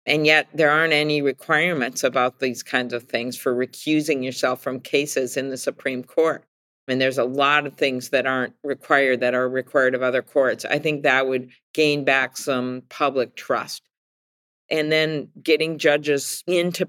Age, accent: 50-69, American